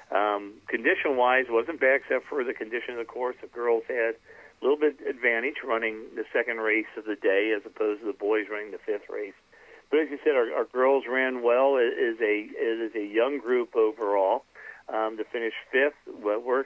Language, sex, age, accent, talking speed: English, male, 50-69, American, 215 wpm